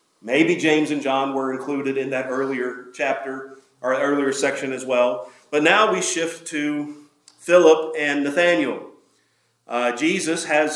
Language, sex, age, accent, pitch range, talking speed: English, male, 40-59, American, 130-160 Hz, 145 wpm